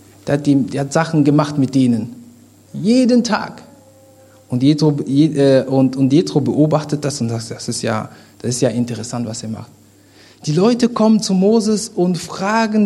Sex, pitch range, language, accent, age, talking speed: male, 120-180 Hz, German, German, 50-69, 175 wpm